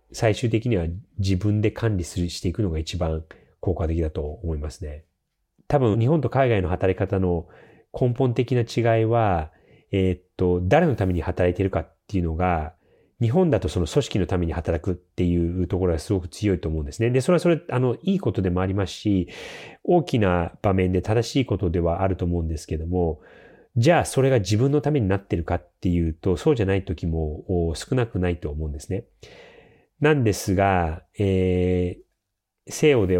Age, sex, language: 30-49, male, Japanese